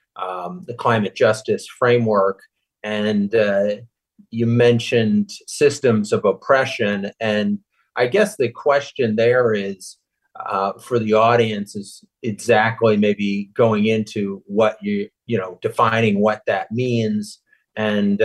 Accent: American